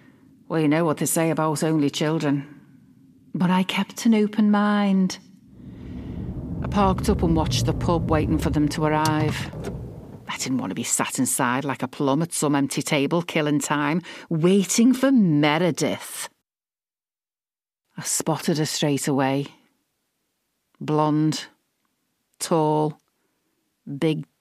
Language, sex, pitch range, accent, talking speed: English, female, 140-170 Hz, British, 135 wpm